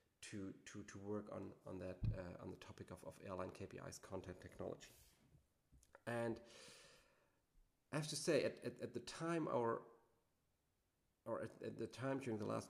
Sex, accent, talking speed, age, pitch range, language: male, German, 170 wpm, 40-59, 105-125 Hz, English